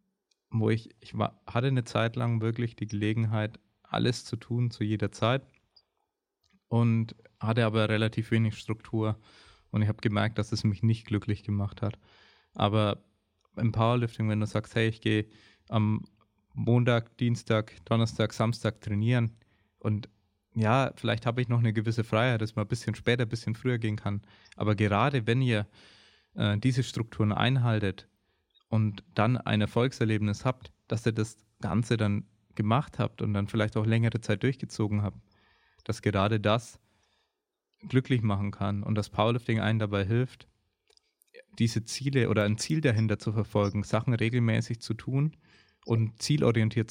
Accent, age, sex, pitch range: German, 20-39, male, 105-120 Hz